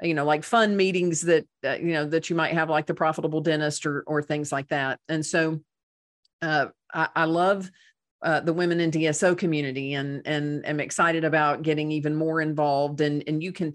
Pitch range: 150-175 Hz